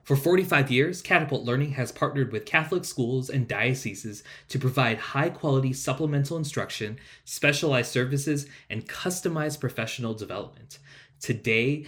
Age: 20-39